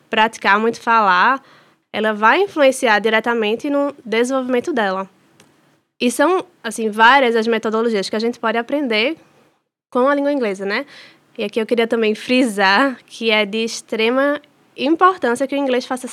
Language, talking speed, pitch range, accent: Portuguese, 155 wpm, 210-255 Hz, Brazilian